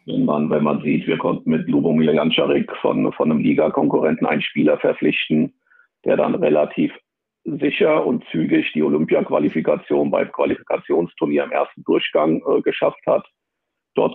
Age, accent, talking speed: 50-69, German, 145 wpm